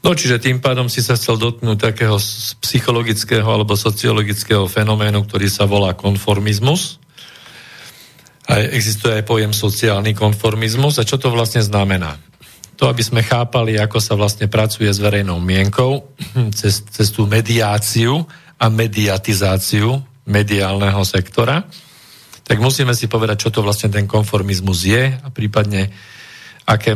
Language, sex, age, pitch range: Slovak, male, 40-59, 105-135 Hz